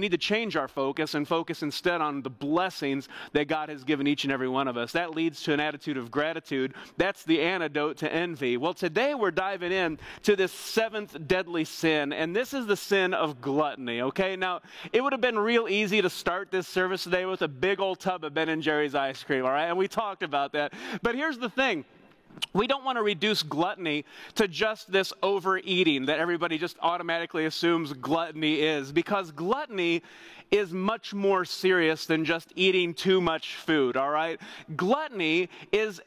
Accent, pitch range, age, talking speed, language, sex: American, 155-195 Hz, 30-49, 200 wpm, English, male